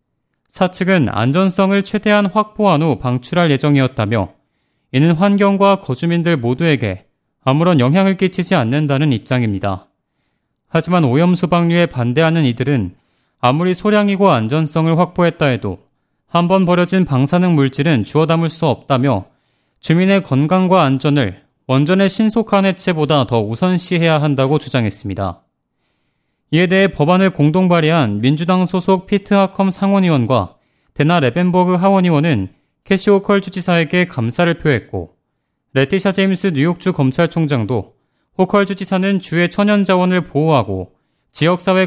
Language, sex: Korean, male